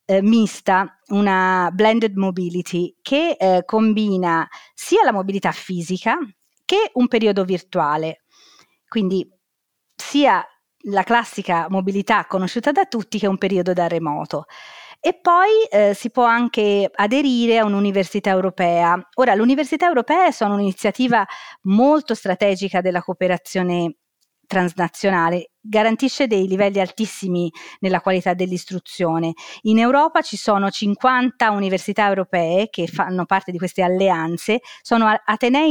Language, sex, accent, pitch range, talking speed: Italian, female, native, 180-225 Hz, 120 wpm